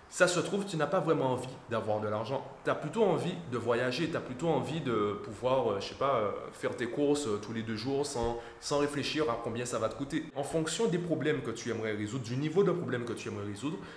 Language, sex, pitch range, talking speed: French, male, 115-155 Hz, 250 wpm